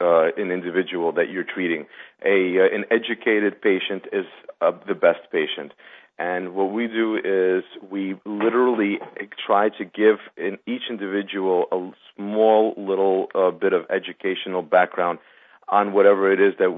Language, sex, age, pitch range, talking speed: English, male, 40-59, 90-110 Hz, 150 wpm